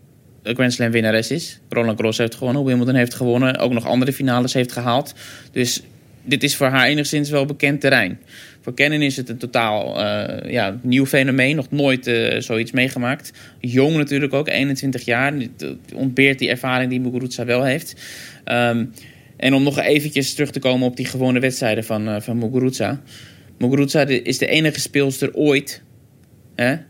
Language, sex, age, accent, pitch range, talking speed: Dutch, male, 20-39, Dutch, 120-140 Hz, 175 wpm